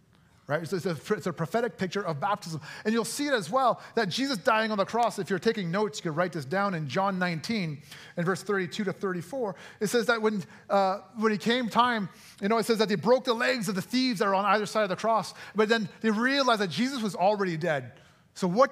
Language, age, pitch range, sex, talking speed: English, 30-49, 175-230 Hz, male, 250 wpm